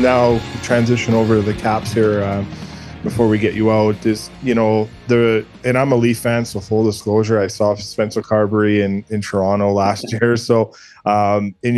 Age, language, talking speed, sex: 20-39, English, 190 wpm, male